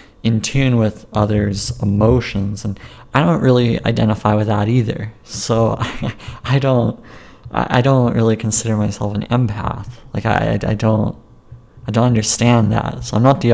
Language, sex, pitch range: English, male, 105-120 Hz